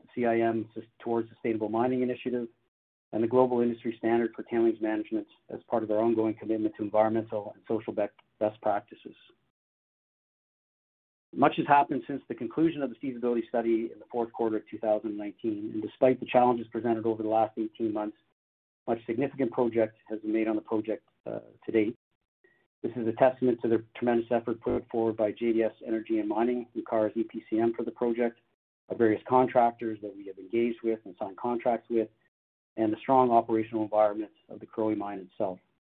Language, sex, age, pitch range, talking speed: English, male, 40-59, 110-120 Hz, 175 wpm